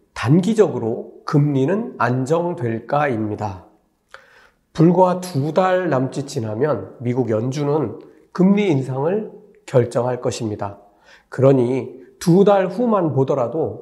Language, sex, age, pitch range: Korean, male, 40-59, 130-185 Hz